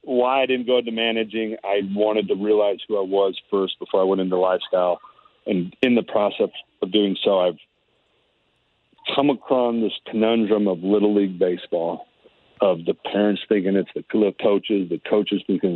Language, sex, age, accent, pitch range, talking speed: English, male, 40-59, American, 95-110 Hz, 170 wpm